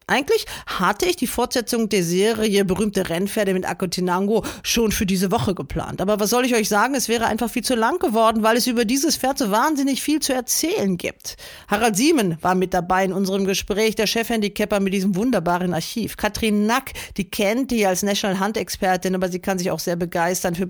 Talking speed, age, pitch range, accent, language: 205 wpm, 40-59, 185-235 Hz, German, German